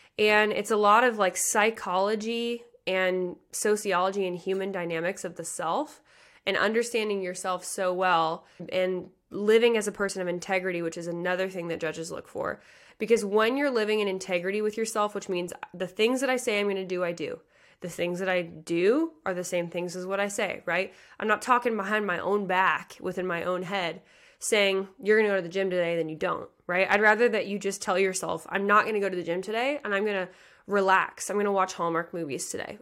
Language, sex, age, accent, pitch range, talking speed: English, female, 20-39, American, 180-210 Hz, 225 wpm